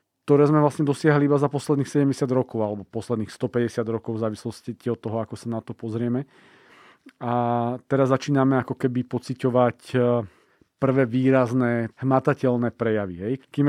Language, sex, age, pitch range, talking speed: Slovak, male, 40-59, 120-135 Hz, 150 wpm